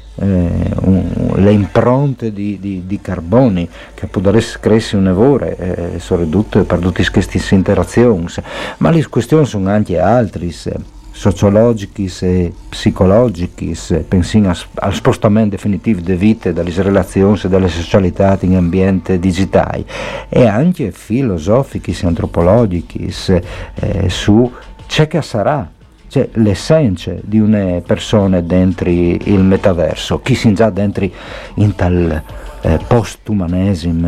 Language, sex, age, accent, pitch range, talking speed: Italian, male, 50-69, native, 90-110 Hz, 120 wpm